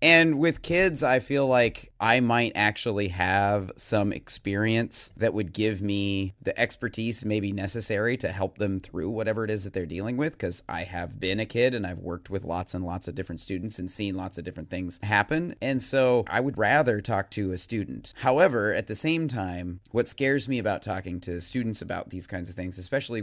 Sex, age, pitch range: male, 30-49, 90-110 Hz